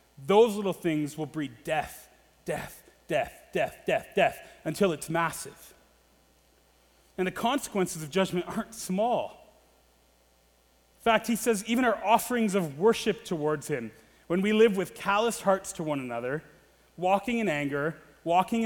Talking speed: 145 wpm